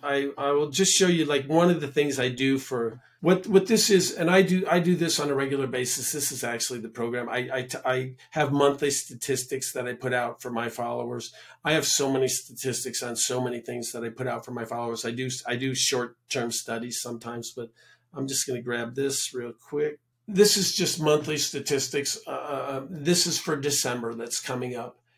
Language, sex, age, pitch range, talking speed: English, male, 50-69, 120-140 Hz, 215 wpm